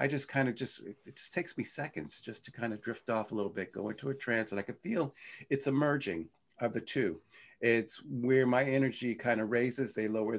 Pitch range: 95-125 Hz